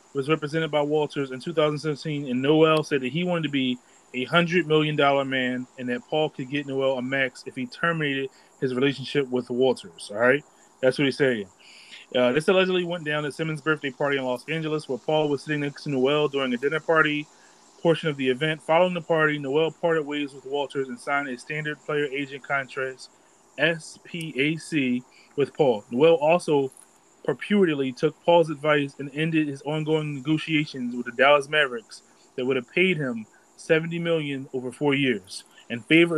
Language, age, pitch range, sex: English, 20-39, 135-160 Hz, male